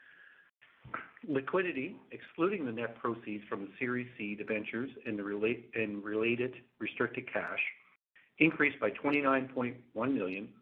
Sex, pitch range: male, 110-135 Hz